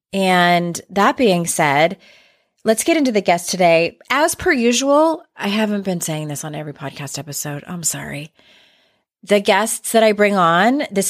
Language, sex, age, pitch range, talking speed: English, female, 30-49, 155-210 Hz, 170 wpm